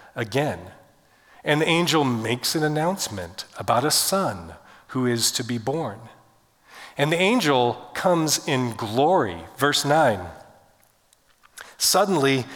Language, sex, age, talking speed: English, male, 40-59, 115 wpm